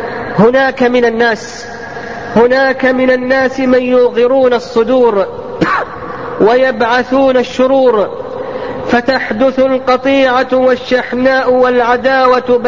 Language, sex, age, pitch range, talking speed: Arabic, female, 40-59, 245-265 Hz, 70 wpm